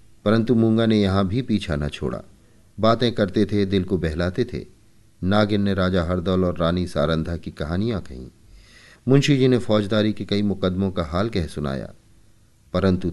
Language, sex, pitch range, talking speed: Hindi, male, 90-110 Hz, 170 wpm